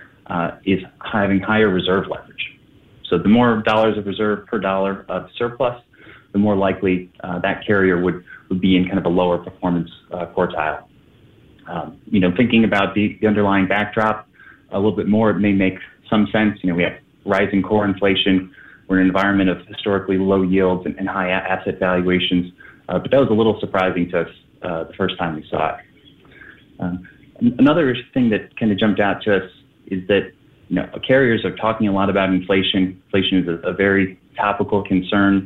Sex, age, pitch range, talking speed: male, 30-49, 95-105 Hz, 195 wpm